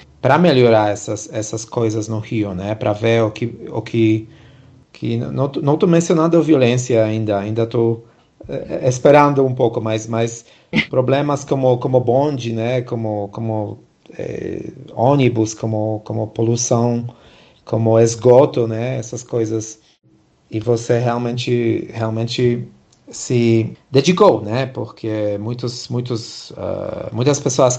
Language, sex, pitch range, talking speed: Portuguese, male, 115-130 Hz, 125 wpm